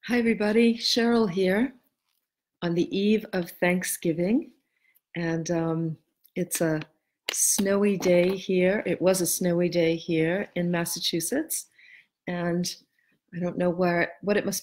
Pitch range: 170-200 Hz